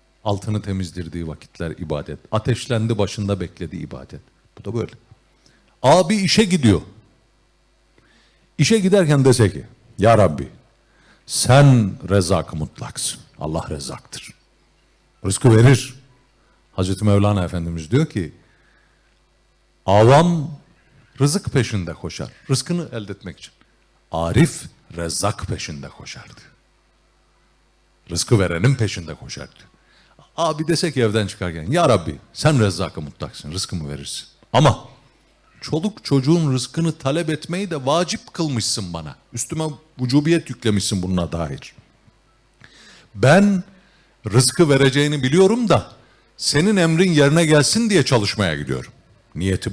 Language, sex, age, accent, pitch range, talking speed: Turkish, male, 50-69, native, 90-145 Hz, 105 wpm